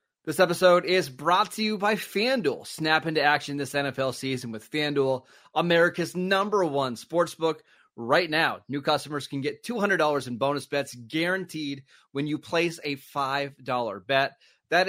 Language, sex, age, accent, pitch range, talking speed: English, male, 30-49, American, 130-170 Hz, 155 wpm